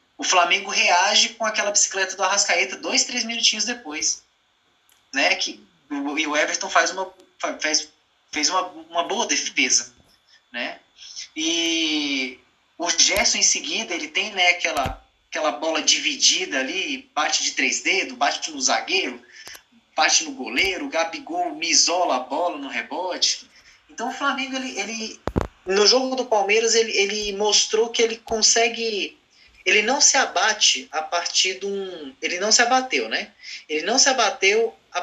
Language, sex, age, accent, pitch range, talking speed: Portuguese, male, 20-39, Brazilian, 185-260 Hz, 150 wpm